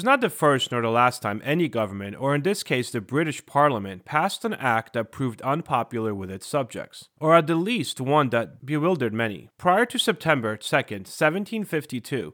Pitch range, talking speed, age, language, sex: 120-170 Hz, 185 wpm, 30-49, English, male